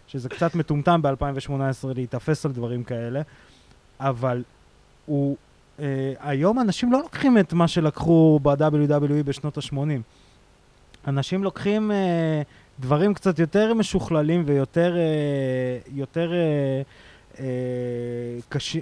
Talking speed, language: 110 wpm, Hebrew